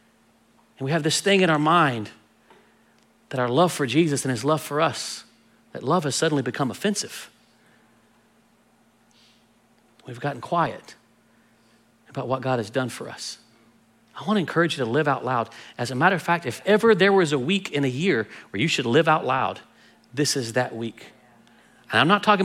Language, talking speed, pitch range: English, 185 wpm, 130-180 Hz